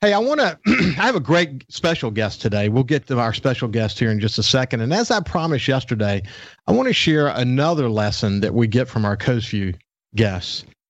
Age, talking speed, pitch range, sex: 50-69, 220 wpm, 110-150 Hz, male